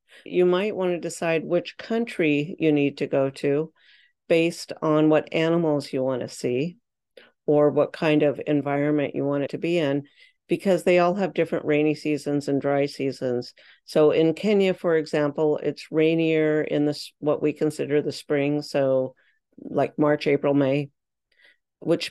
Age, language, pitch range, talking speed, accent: 50-69, English, 145-170 Hz, 165 wpm, American